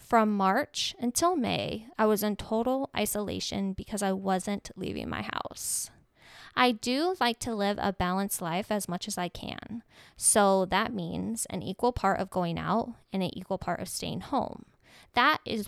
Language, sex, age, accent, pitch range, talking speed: English, female, 20-39, American, 195-235 Hz, 175 wpm